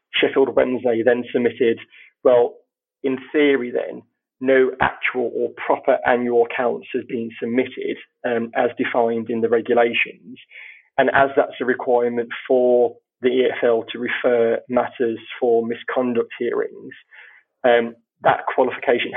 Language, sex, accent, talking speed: English, male, British, 125 wpm